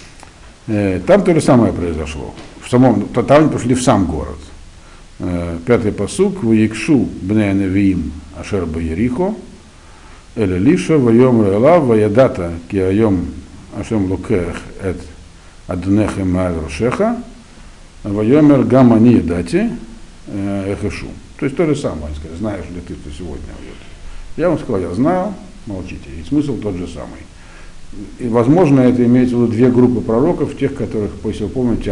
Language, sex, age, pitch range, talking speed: Russian, male, 60-79, 85-120 Hz, 110 wpm